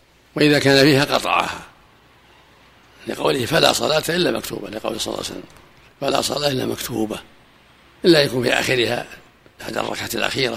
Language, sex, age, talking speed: Arabic, male, 60-79, 155 wpm